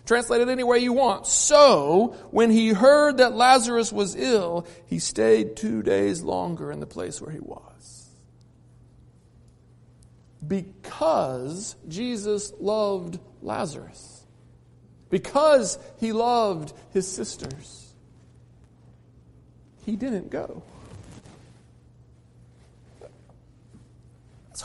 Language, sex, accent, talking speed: English, male, American, 95 wpm